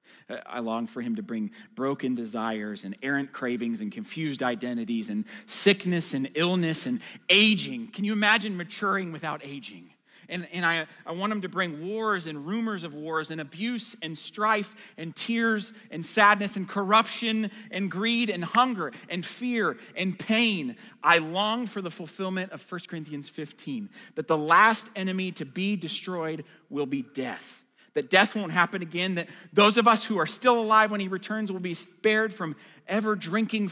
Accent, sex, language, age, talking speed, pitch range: American, male, English, 30-49, 175 wpm, 145-215 Hz